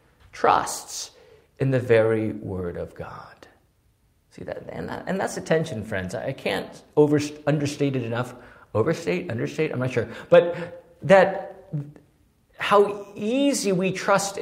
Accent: American